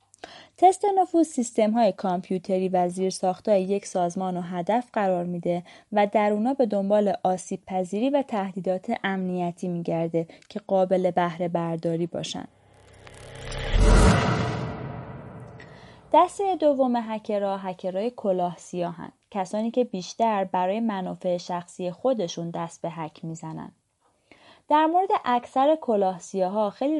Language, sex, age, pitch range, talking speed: Persian, female, 20-39, 180-235 Hz, 115 wpm